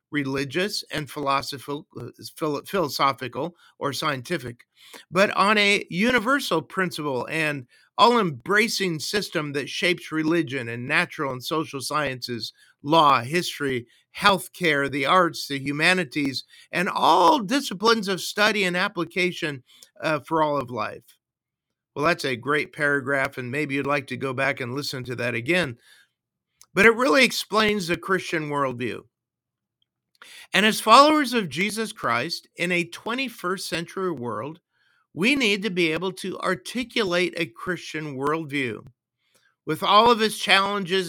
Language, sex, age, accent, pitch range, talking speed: English, male, 50-69, American, 140-195 Hz, 135 wpm